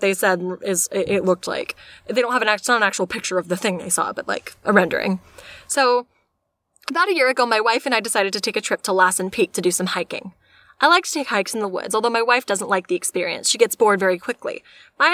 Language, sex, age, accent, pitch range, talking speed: English, female, 20-39, American, 190-260 Hz, 255 wpm